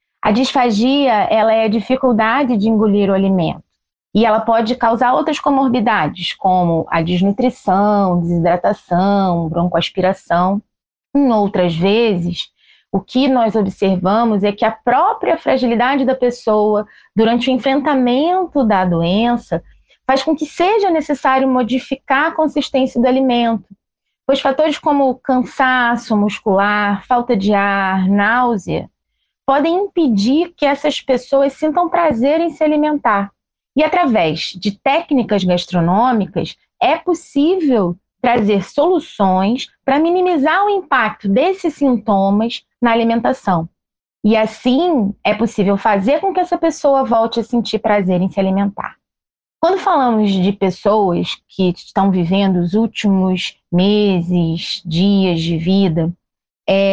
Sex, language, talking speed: female, Portuguese, 120 wpm